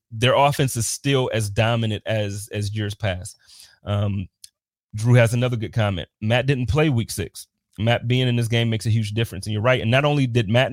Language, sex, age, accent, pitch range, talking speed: English, male, 30-49, American, 110-130 Hz, 215 wpm